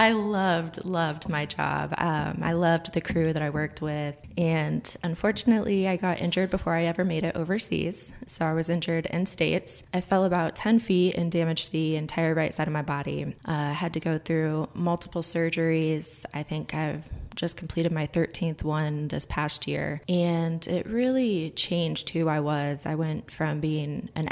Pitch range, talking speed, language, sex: 150-175 Hz, 185 wpm, English, female